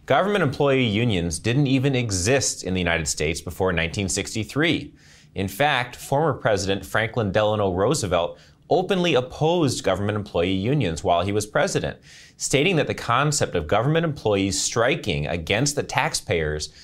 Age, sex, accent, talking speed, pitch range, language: 30-49, male, American, 140 wpm, 90-130 Hz, English